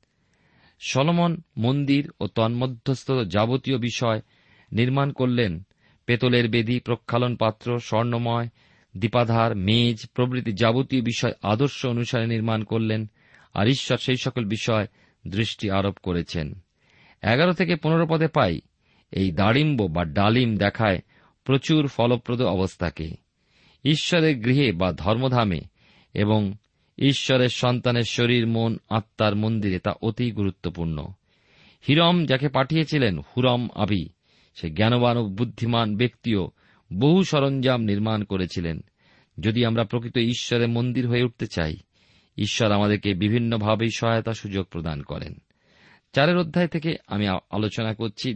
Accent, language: native, Bengali